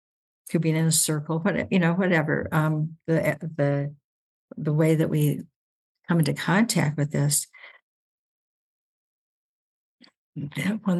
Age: 60-79